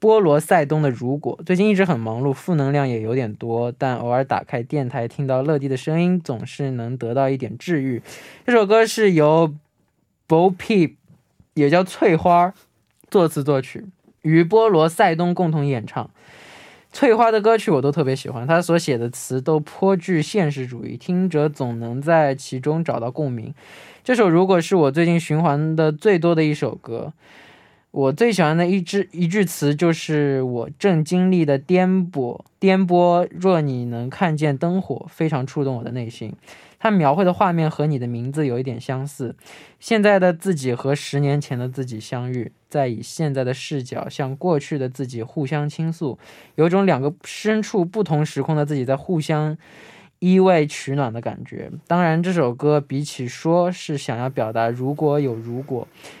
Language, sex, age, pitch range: Korean, male, 20-39, 130-175 Hz